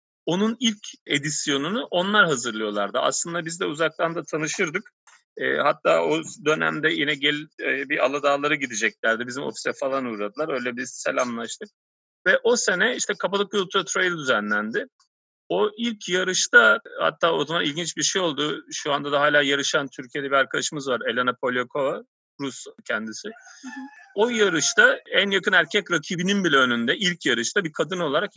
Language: Turkish